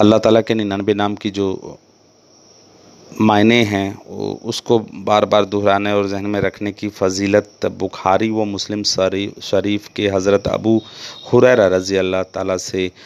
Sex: male